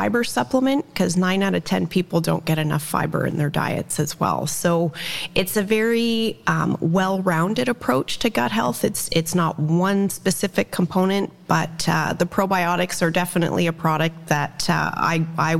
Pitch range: 160-195 Hz